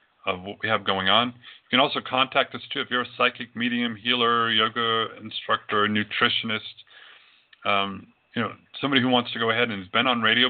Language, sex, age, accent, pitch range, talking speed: English, male, 40-59, American, 100-120 Hz, 200 wpm